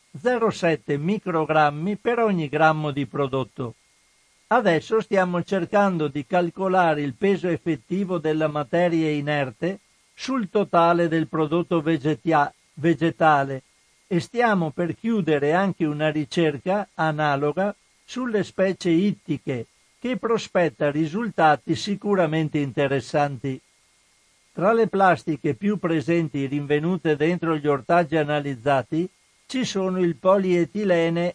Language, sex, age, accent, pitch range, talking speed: Italian, male, 60-79, native, 150-185 Hz, 100 wpm